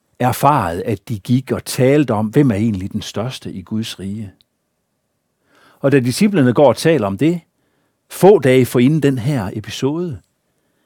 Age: 60-79